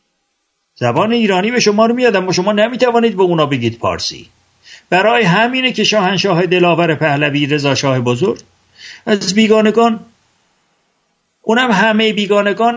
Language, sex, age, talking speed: English, male, 60-79, 125 wpm